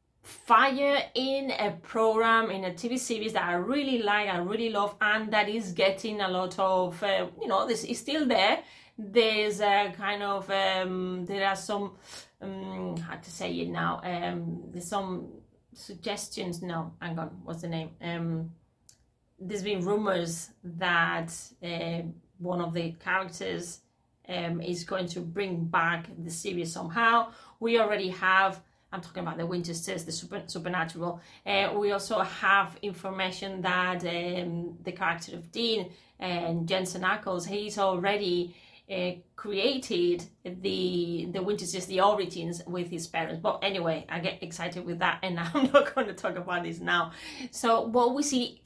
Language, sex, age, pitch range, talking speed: English, female, 30-49, 175-220 Hz, 160 wpm